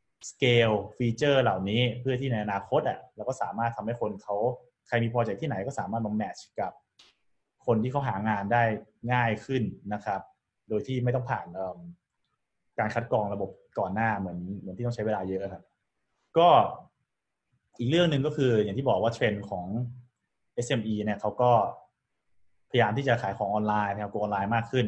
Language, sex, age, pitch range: Thai, male, 20-39, 105-125 Hz